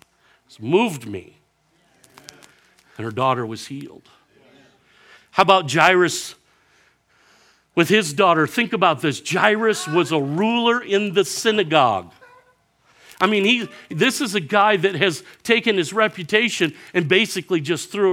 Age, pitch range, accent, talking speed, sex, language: 50-69, 115-180 Hz, American, 130 wpm, male, English